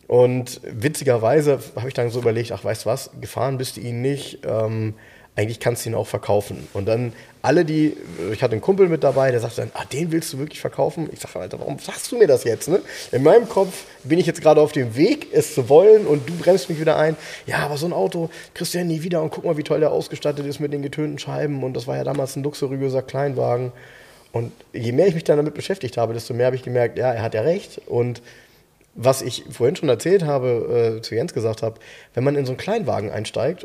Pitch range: 115-155 Hz